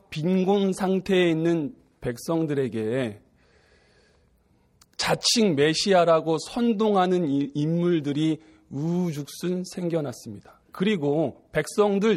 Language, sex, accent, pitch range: Korean, male, native, 140-200 Hz